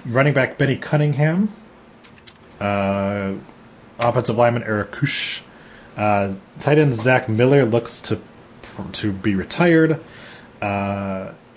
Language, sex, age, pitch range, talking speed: English, male, 30-49, 100-125 Hz, 105 wpm